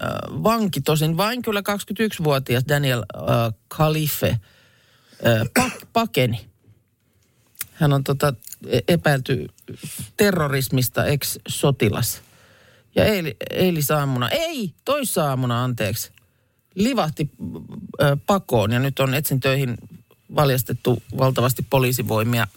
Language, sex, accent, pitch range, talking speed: Finnish, male, native, 120-160 Hz, 90 wpm